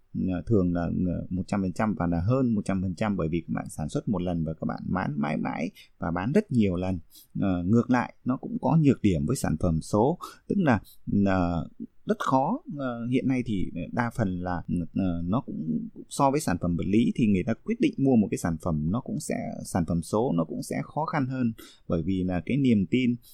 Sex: male